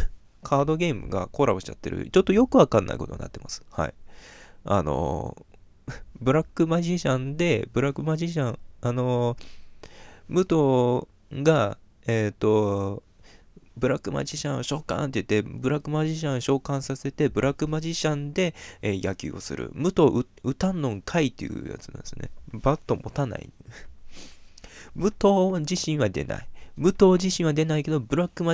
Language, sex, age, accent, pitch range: Japanese, male, 20-39, native, 110-165 Hz